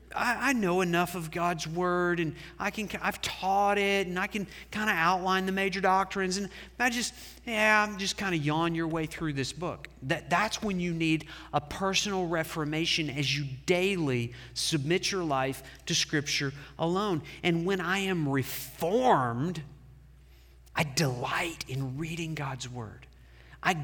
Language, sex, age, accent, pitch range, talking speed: English, male, 40-59, American, 145-190 Hz, 160 wpm